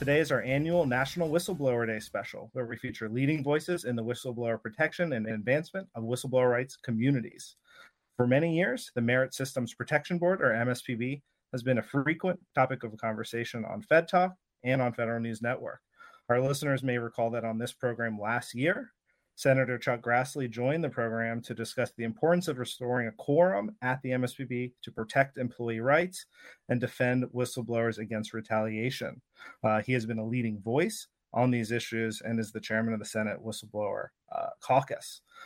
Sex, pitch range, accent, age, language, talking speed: male, 115-140 Hz, American, 30-49, English, 175 wpm